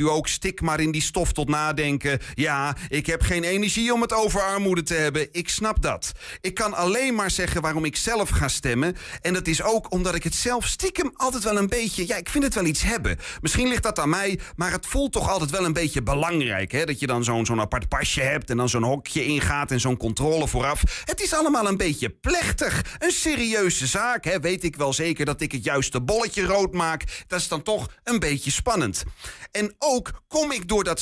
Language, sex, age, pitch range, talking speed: Dutch, male, 30-49, 150-220 Hz, 230 wpm